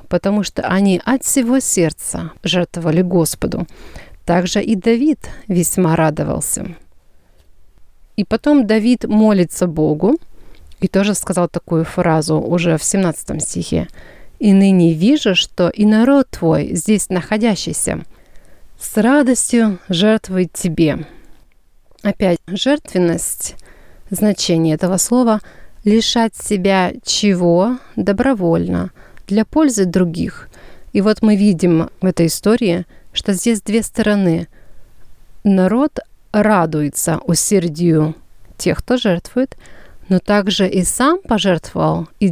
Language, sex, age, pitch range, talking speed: Russian, female, 30-49, 175-220 Hz, 105 wpm